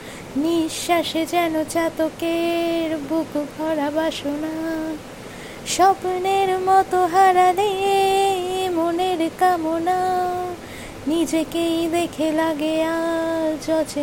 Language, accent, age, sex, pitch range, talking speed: Bengali, native, 20-39, female, 330-455 Hz, 65 wpm